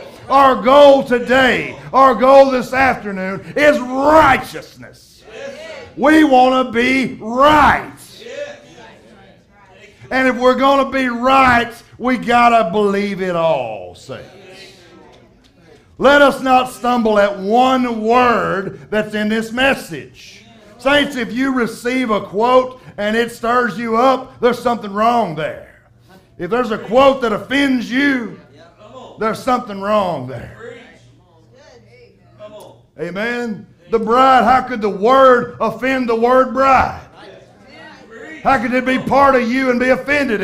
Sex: male